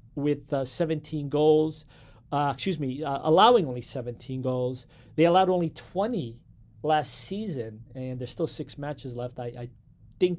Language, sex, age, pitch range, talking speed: English, male, 40-59, 130-160 Hz, 155 wpm